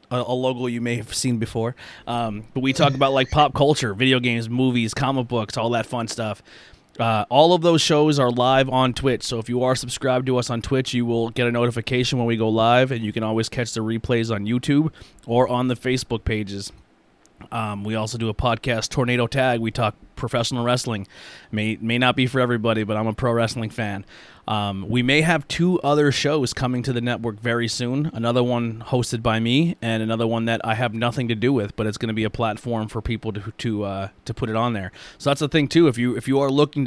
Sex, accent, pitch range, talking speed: male, American, 110-130 Hz, 235 wpm